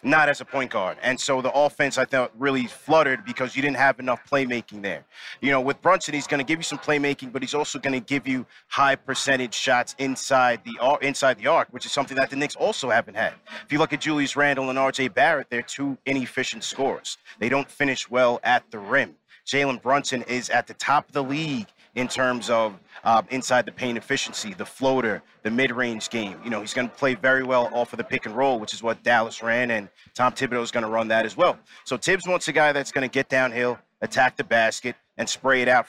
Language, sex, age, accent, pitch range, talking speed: English, male, 30-49, American, 125-145 Hz, 240 wpm